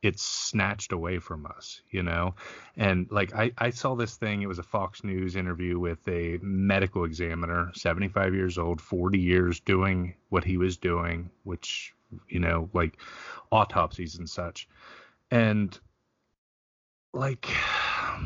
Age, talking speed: 30-49, 140 wpm